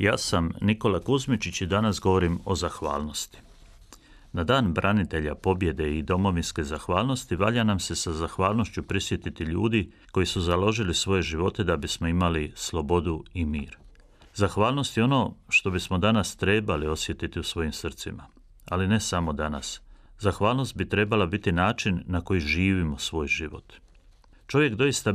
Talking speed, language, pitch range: 145 wpm, Croatian, 85-105 Hz